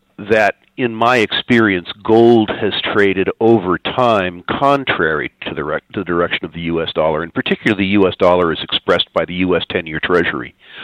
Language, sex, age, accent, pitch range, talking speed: English, male, 50-69, American, 95-115 Hz, 165 wpm